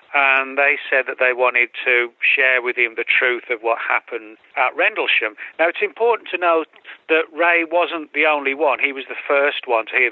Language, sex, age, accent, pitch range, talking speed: English, male, 40-59, British, 120-145 Hz, 210 wpm